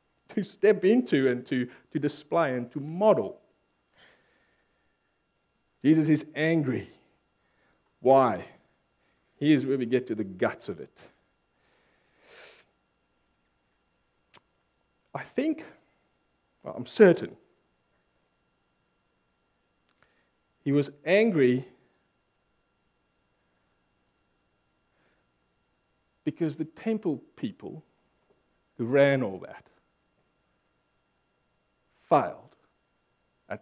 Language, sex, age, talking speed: English, male, 50-69, 75 wpm